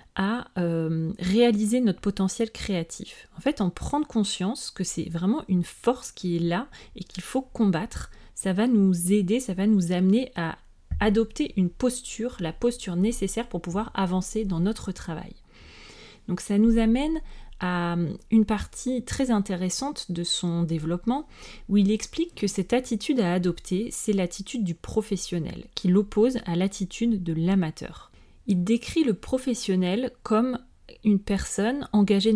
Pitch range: 185-230 Hz